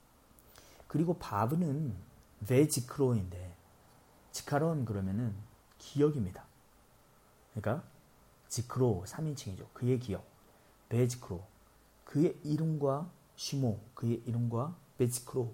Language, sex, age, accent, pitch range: Korean, male, 40-59, native, 110-140 Hz